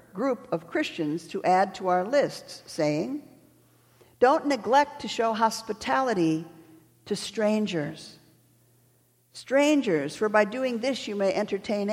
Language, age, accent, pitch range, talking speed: English, 50-69, American, 160-235 Hz, 120 wpm